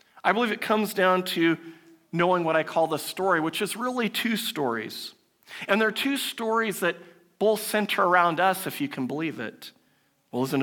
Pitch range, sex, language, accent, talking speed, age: 165-225 Hz, male, English, American, 190 wpm, 50-69